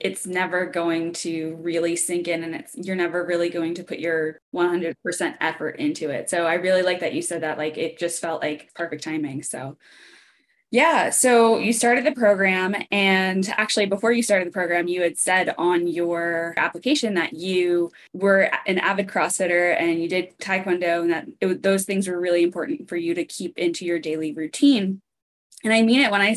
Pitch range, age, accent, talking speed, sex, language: 170-200 Hz, 10-29, American, 195 wpm, female, English